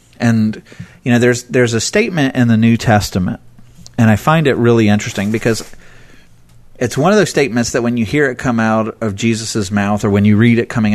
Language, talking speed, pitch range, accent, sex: English, 215 wpm, 100-120 Hz, American, male